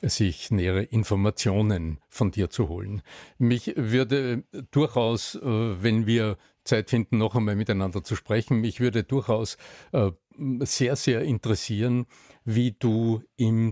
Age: 50-69